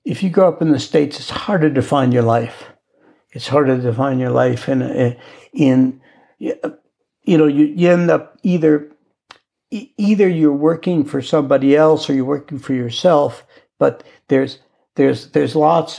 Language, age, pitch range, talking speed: English, 60-79, 125-155 Hz, 170 wpm